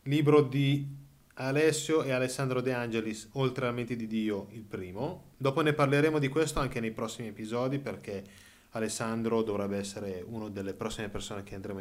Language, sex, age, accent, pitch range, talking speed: Italian, male, 20-39, native, 115-150 Hz, 170 wpm